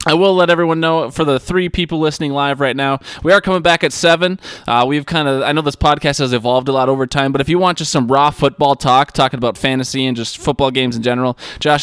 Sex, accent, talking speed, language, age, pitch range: male, American, 260 wpm, English, 20-39, 120-150 Hz